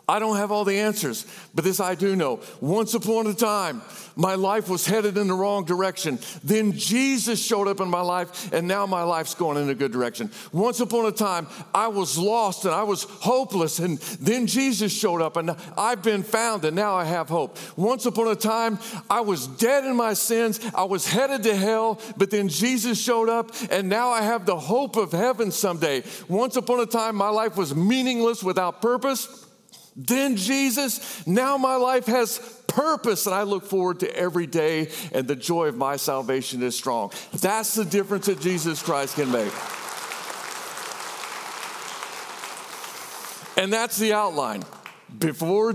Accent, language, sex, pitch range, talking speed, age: American, English, male, 165-225 Hz, 180 wpm, 50-69